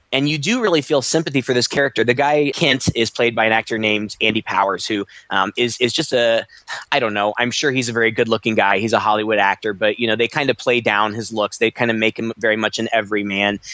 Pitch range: 105-125 Hz